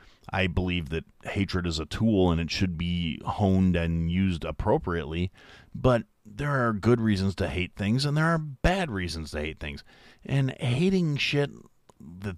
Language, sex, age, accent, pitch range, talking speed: English, male, 40-59, American, 90-125 Hz, 170 wpm